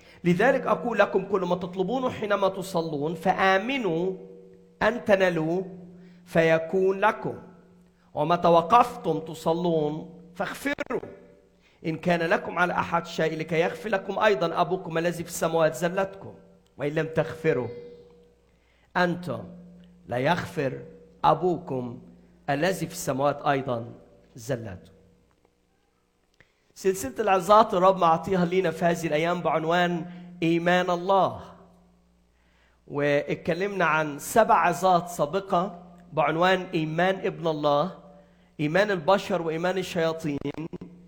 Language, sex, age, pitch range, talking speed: Arabic, male, 40-59, 150-190 Hz, 100 wpm